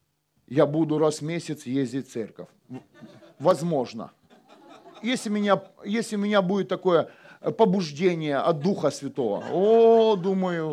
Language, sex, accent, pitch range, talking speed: Russian, male, native, 140-205 Hz, 115 wpm